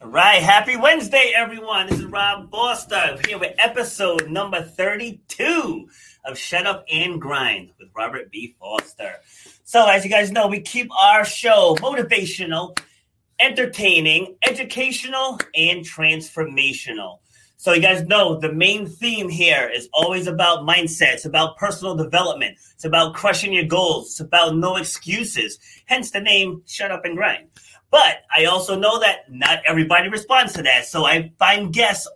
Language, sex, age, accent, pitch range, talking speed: English, male, 30-49, American, 160-200 Hz, 155 wpm